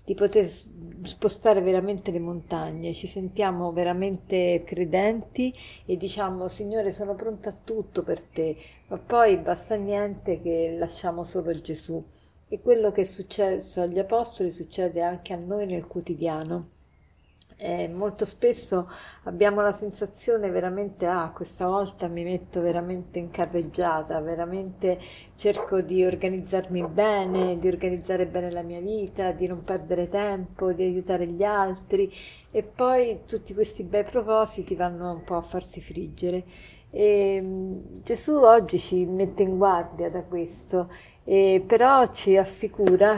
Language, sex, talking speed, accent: Italian, female, 140 wpm, native